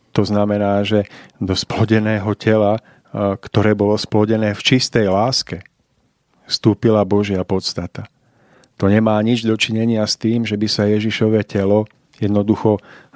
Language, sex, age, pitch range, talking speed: Slovak, male, 40-59, 105-120 Hz, 125 wpm